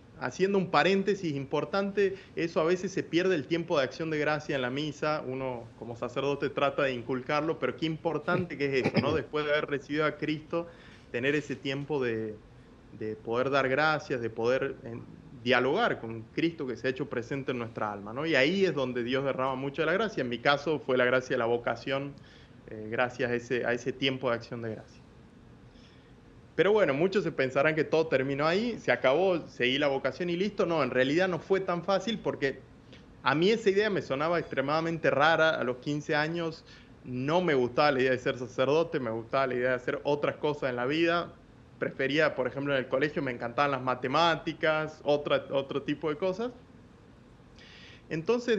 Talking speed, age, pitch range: 195 wpm, 30-49, 130-165 Hz